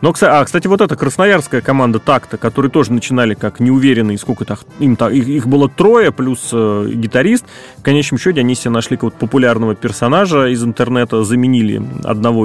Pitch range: 115-145 Hz